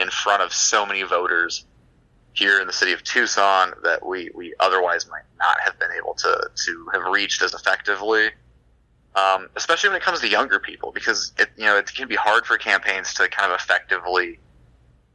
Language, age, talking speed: English, 30-49, 195 wpm